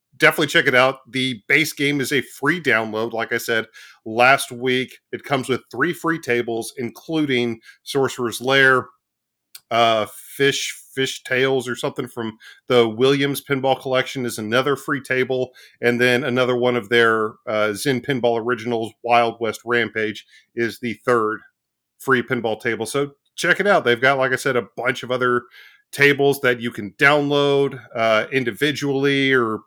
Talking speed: 160 wpm